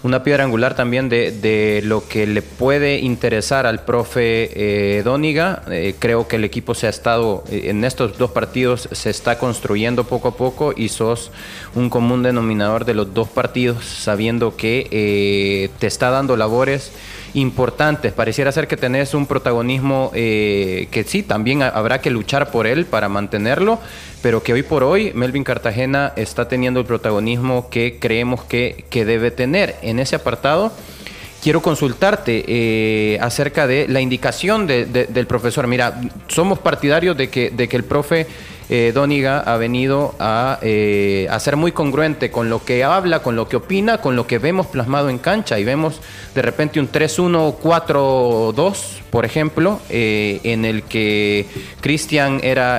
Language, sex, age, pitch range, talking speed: Spanish, male, 30-49, 115-140 Hz, 170 wpm